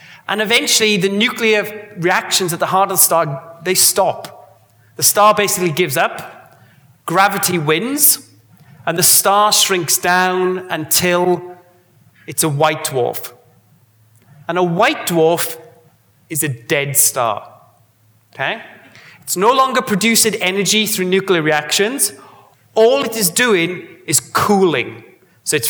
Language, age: English, 30-49